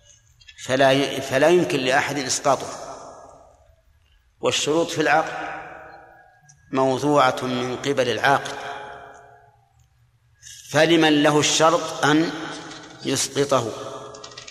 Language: Arabic